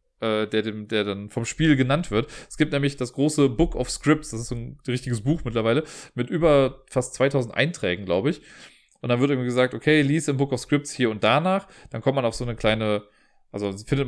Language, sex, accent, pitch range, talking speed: German, male, German, 115-145 Hz, 230 wpm